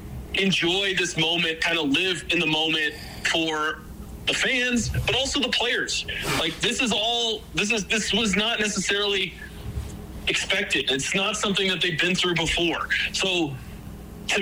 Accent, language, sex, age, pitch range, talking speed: American, English, male, 30-49, 145-185 Hz, 155 wpm